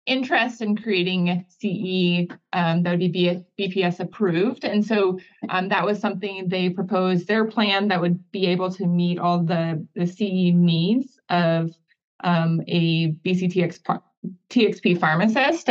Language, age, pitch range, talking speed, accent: English, 20-39, 175-195 Hz, 140 wpm, American